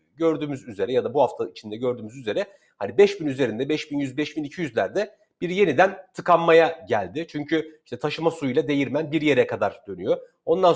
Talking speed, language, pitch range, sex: 155 wpm, Turkish, 130-170 Hz, male